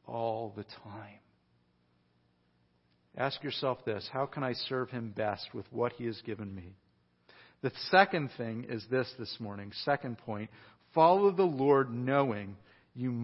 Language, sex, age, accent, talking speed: English, male, 50-69, American, 145 wpm